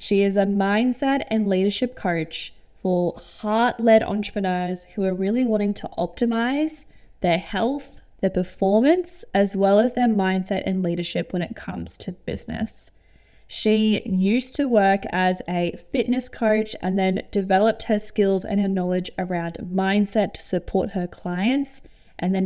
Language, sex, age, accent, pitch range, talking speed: English, female, 10-29, Australian, 185-220 Hz, 150 wpm